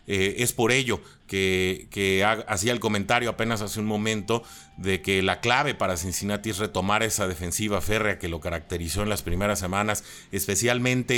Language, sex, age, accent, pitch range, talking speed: Spanish, male, 30-49, Mexican, 95-115 Hz, 170 wpm